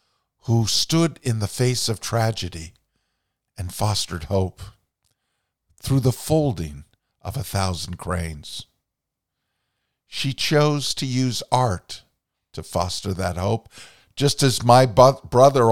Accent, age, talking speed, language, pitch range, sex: American, 50-69, 115 wpm, English, 95-125 Hz, male